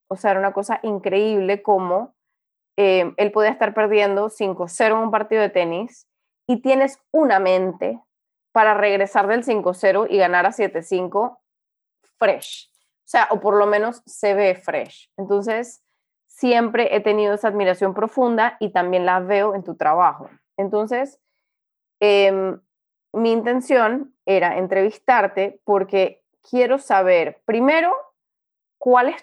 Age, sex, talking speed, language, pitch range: 20-39, female, 135 wpm, Spanish, 190-235 Hz